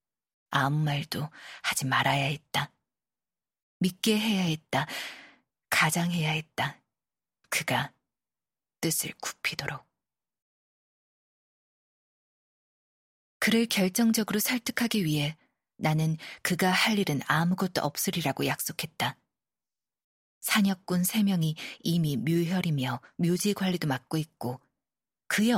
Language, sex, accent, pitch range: Korean, female, native, 150-190 Hz